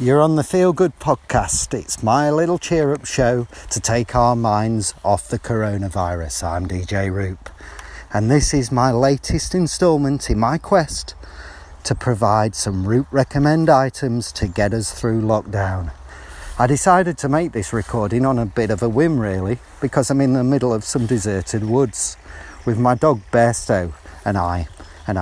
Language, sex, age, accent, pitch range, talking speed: English, male, 40-59, British, 95-130 Hz, 170 wpm